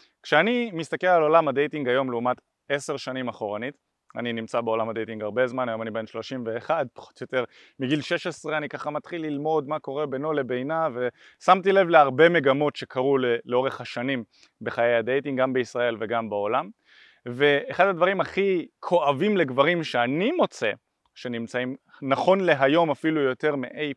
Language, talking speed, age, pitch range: Hebrew, 150 wpm, 20-39, 130-175 Hz